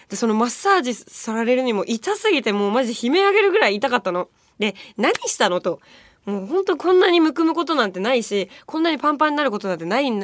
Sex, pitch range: female, 210-340 Hz